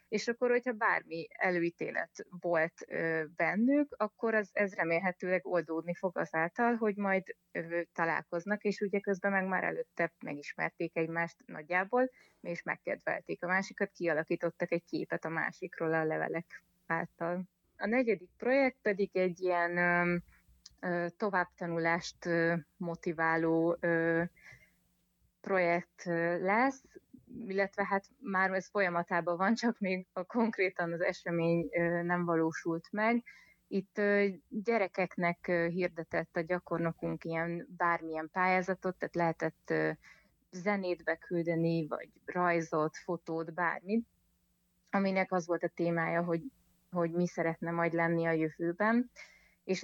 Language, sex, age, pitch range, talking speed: Hungarian, female, 30-49, 170-200 Hz, 110 wpm